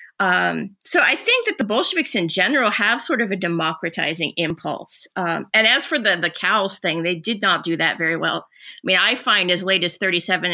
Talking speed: 215 wpm